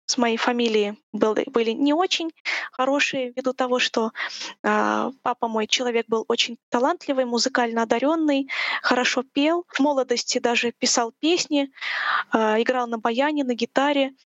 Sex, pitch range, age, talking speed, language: female, 230-275 Hz, 20-39, 120 wpm, Russian